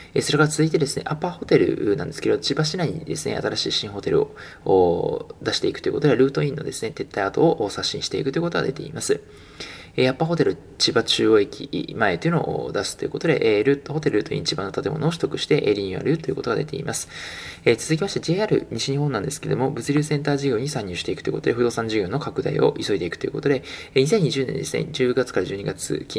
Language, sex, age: Japanese, male, 20-39